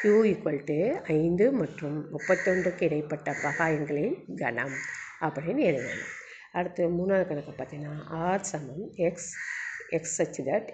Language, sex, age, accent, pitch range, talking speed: Tamil, female, 50-69, native, 155-180 Hz, 125 wpm